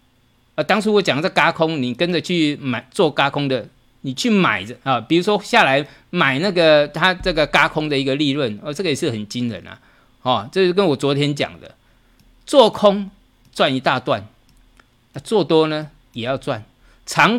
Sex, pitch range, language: male, 120-185 Hz, Chinese